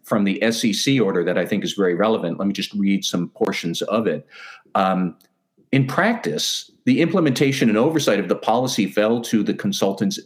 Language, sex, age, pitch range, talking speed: English, male, 50-69, 95-120 Hz, 185 wpm